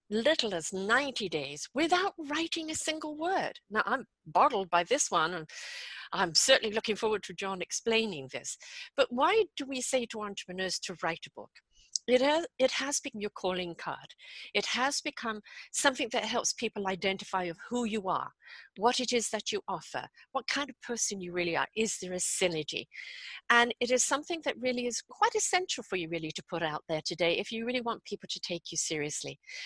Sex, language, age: female, English, 50-69